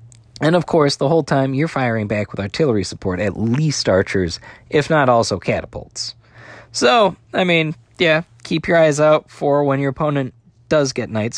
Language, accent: English, American